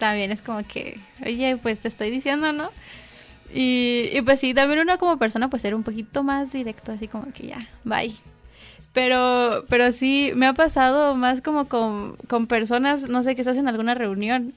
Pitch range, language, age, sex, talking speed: 220-270 Hz, Spanish, 20-39, female, 195 wpm